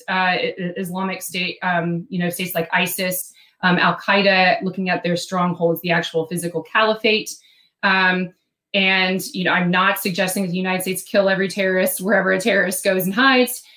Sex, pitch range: female, 175-195 Hz